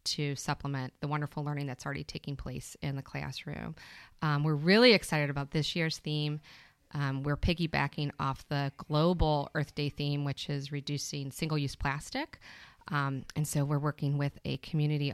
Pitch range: 140-150 Hz